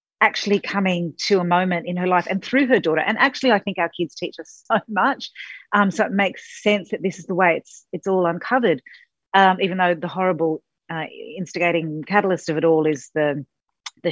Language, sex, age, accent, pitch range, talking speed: English, female, 40-59, Australian, 155-195 Hz, 220 wpm